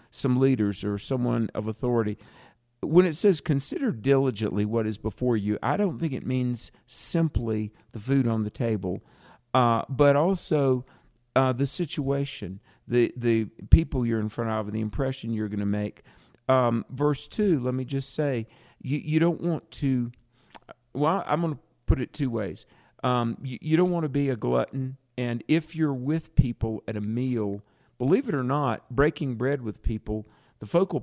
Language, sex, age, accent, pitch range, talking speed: English, male, 50-69, American, 110-135 Hz, 180 wpm